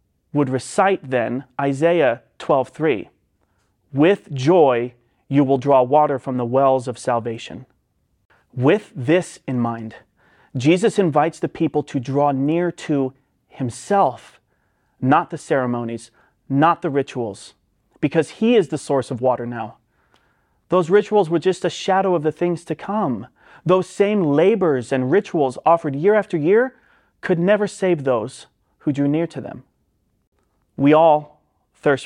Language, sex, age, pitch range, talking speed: English, male, 30-49, 125-165 Hz, 140 wpm